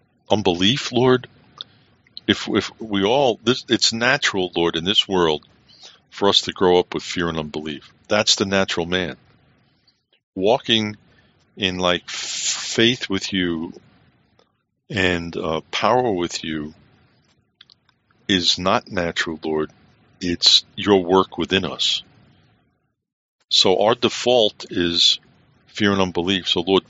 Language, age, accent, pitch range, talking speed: English, 50-69, American, 85-110 Hz, 125 wpm